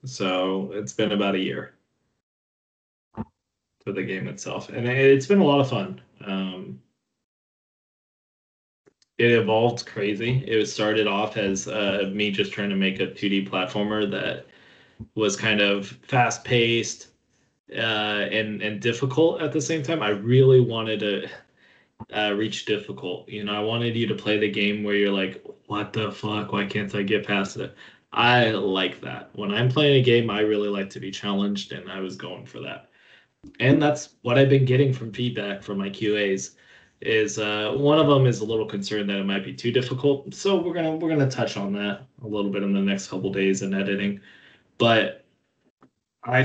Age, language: 20-39, English